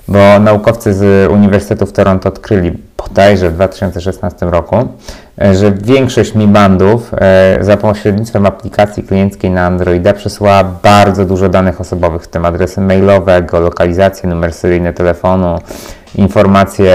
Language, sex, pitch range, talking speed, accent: Polish, male, 90-100 Hz, 130 wpm, native